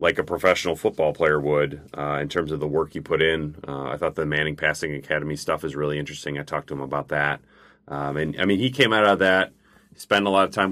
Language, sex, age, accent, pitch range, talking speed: English, male, 30-49, American, 75-95 Hz, 260 wpm